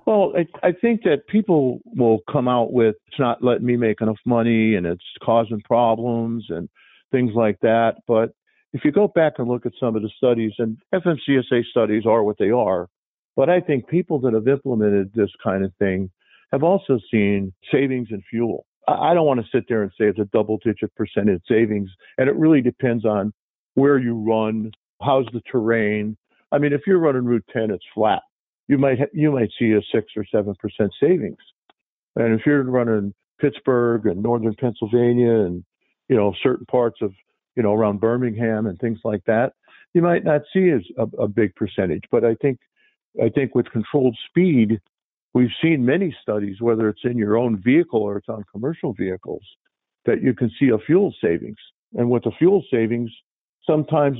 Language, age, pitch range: English, 50-69, 110-135 Hz